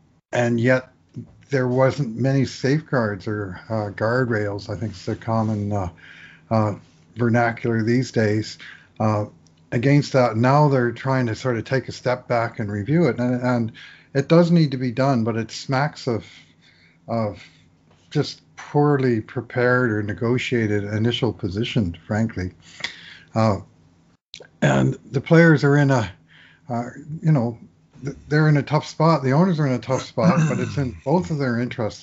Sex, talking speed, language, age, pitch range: male, 160 wpm, English, 50-69, 105-130 Hz